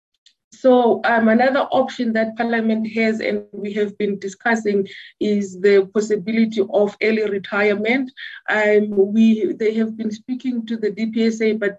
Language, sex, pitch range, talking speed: English, female, 195-220 Hz, 145 wpm